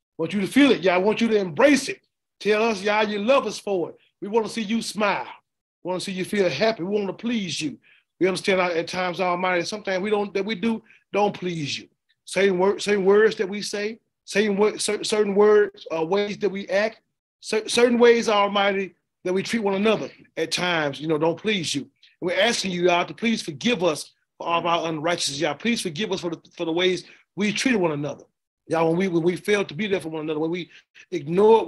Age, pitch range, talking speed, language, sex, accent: 30-49, 160-210 Hz, 240 wpm, English, male, American